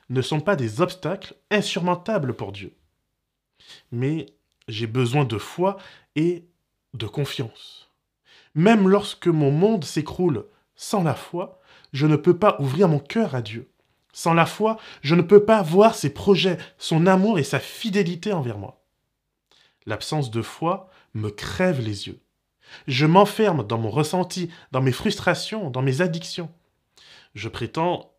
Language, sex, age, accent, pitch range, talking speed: French, male, 20-39, French, 130-190 Hz, 150 wpm